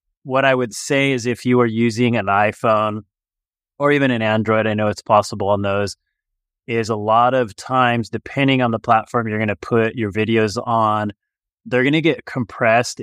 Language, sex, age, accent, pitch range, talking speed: English, male, 30-49, American, 105-125 Hz, 195 wpm